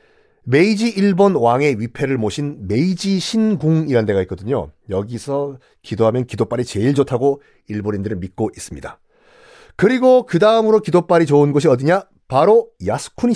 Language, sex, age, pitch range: Korean, male, 40-59, 125-205 Hz